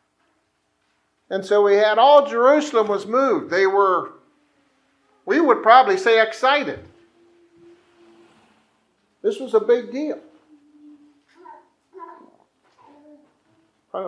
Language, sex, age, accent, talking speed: English, male, 50-69, American, 90 wpm